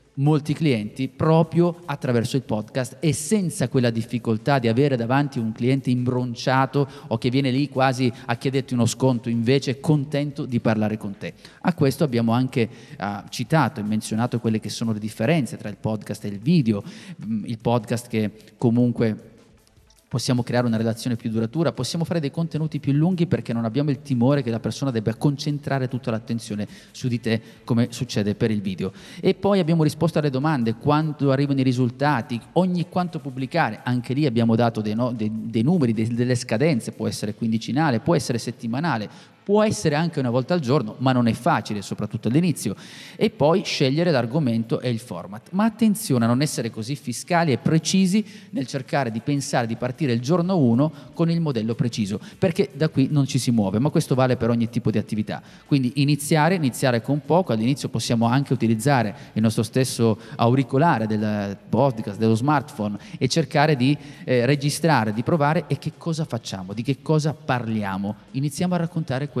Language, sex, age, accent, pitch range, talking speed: Italian, male, 30-49, native, 115-150 Hz, 175 wpm